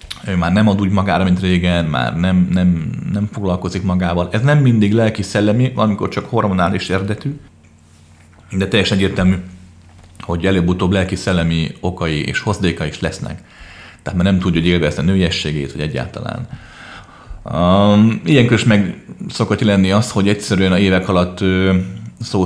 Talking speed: 150 wpm